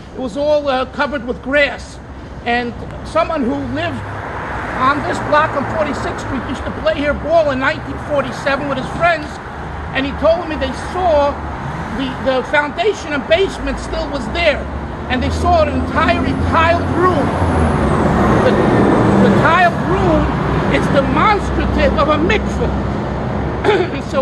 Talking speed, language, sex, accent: 145 wpm, English, male, American